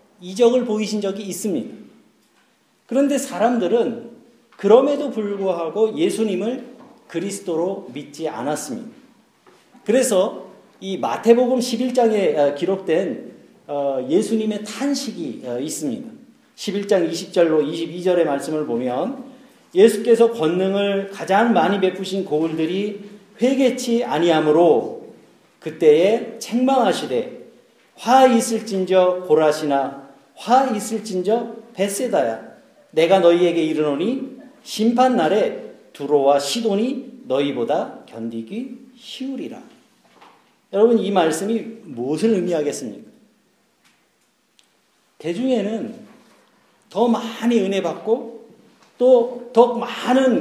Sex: male